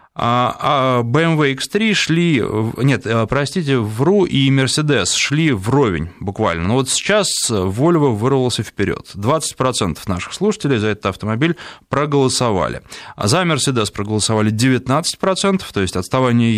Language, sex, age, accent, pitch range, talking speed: Russian, male, 20-39, native, 110-150 Hz, 120 wpm